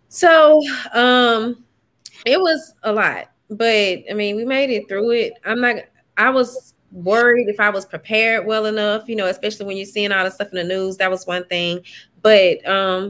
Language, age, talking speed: English, 20-39, 195 wpm